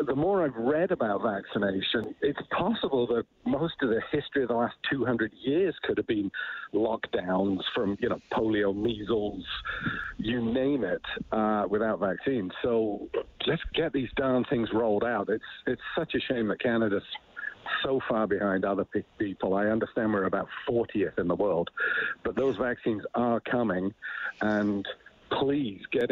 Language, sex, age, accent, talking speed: English, male, 50-69, British, 160 wpm